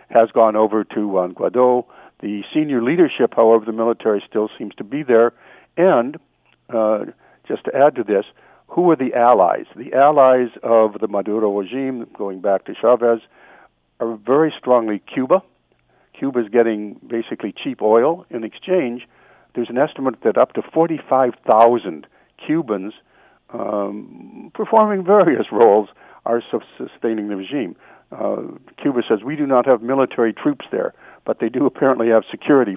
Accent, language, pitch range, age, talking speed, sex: American, English, 105-130 Hz, 60-79, 150 wpm, male